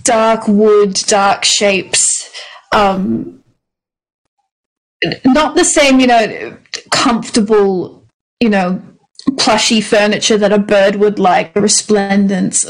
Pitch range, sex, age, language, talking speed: 195-230 Hz, female, 30-49, English, 105 wpm